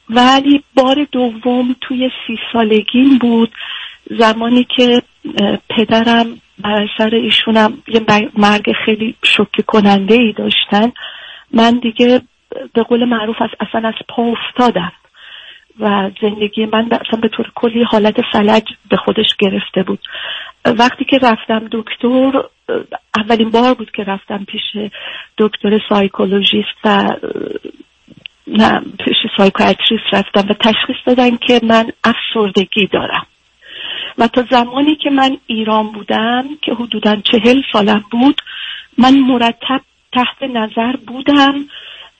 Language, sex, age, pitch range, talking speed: Persian, female, 40-59, 215-255 Hz, 120 wpm